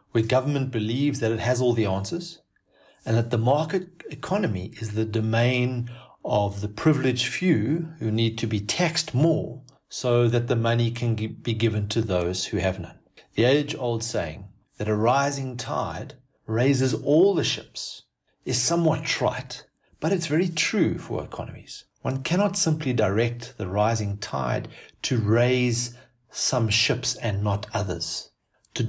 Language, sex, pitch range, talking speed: English, male, 110-135 Hz, 155 wpm